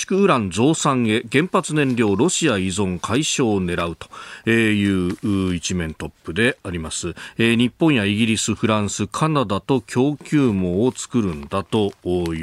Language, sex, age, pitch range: Japanese, male, 40-59, 100-150 Hz